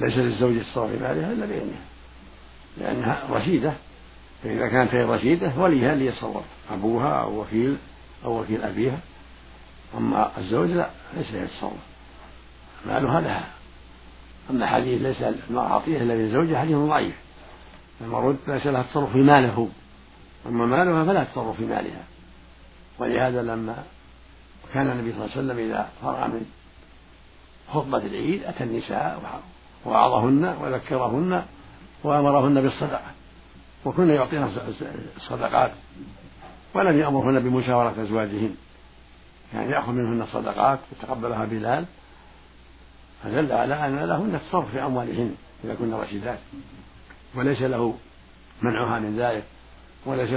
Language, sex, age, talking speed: Arabic, male, 60-79, 115 wpm